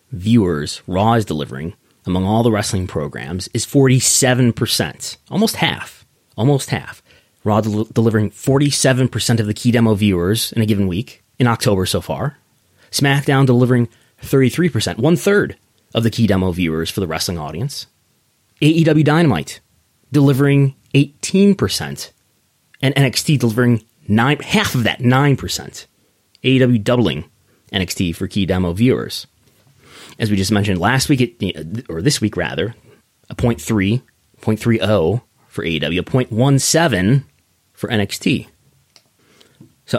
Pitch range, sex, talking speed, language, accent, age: 105-135 Hz, male, 125 wpm, English, American, 30-49